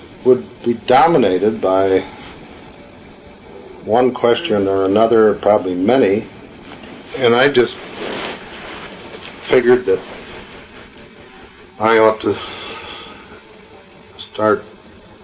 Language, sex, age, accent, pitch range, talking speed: English, male, 60-79, American, 95-110 Hz, 75 wpm